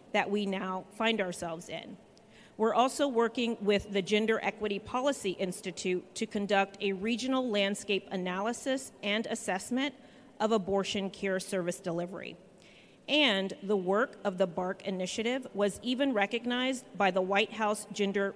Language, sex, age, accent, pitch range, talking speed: English, female, 40-59, American, 185-220 Hz, 140 wpm